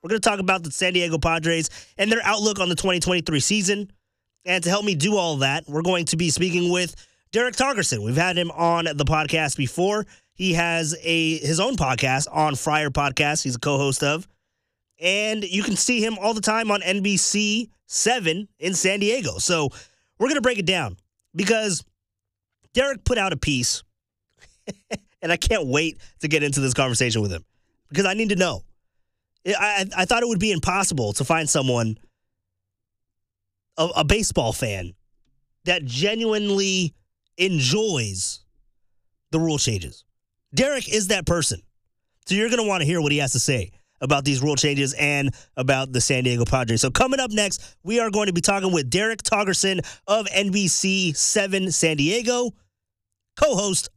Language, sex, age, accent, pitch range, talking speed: English, male, 20-39, American, 125-195 Hz, 175 wpm